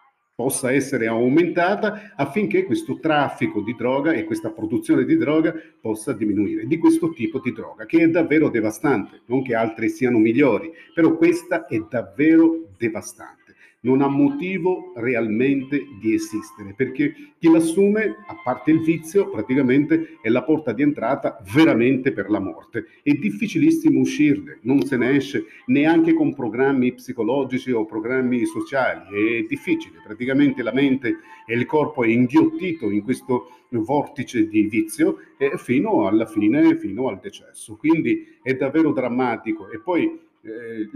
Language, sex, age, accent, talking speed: Italian, male, 50-69, native, 145 wpm